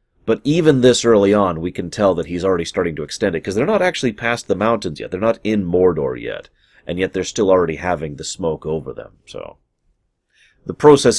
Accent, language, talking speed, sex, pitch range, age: American, English, 220 wpm, male, 85-130 Hz, 30-49